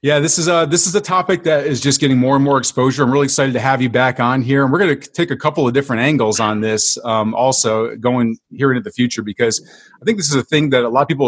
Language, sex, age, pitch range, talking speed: English, male, 30-49, 120-160 Hz, 300 wpm